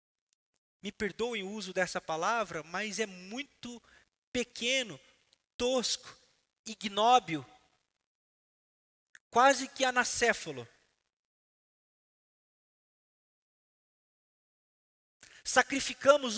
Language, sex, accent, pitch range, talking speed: Portuguese, male, Brazilian, 190-260 Hz, 60 wpm